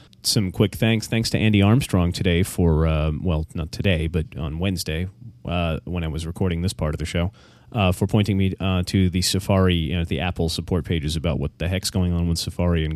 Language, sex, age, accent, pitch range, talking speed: English, male, 30-49, American, 85-105 Hz, 225 wpm